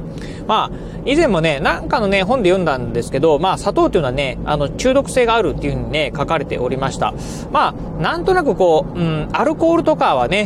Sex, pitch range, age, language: male, 150-210 Hz, 30-49, Japanese